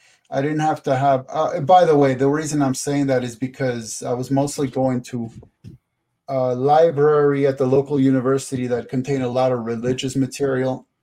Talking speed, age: 185 wpm, 30-49